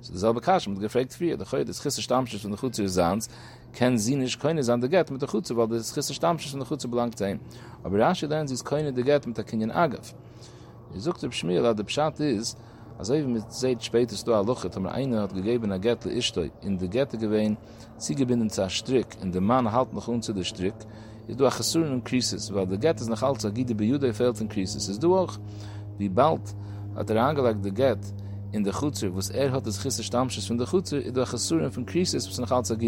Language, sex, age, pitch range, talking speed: English, male, 40-59, 100-130 Hz, 75 wpm